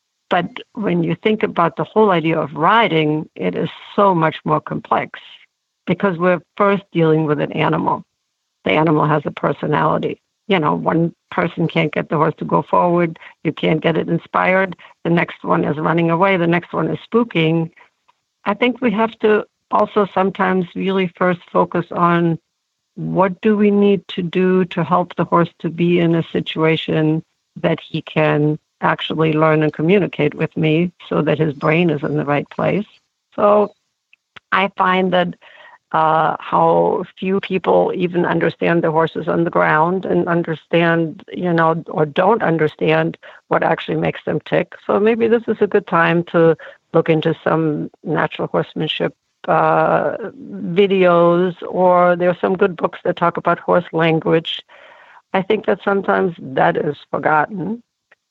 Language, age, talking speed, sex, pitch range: English, 70-89, 165 wpm, female, 160-190 Hz